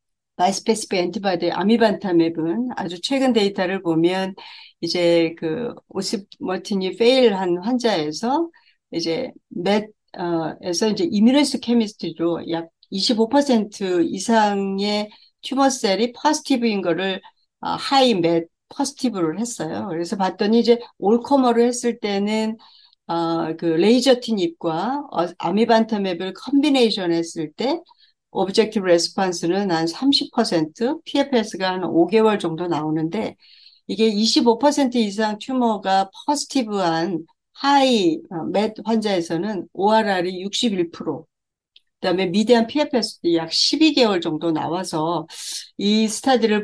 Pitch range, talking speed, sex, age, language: 170-240 Hz, 90 wpm, female, 60-79, English